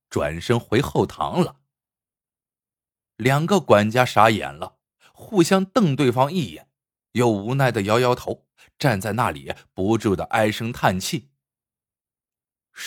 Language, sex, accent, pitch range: Chinese, male, native, 110-175 Hz